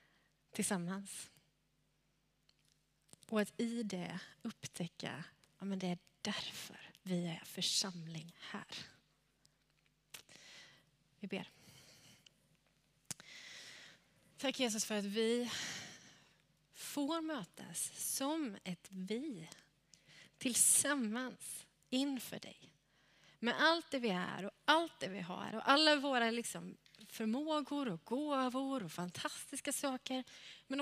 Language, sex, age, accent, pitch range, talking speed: Swedish, female, 30-49, native, 190-250 Hz, 95 wpm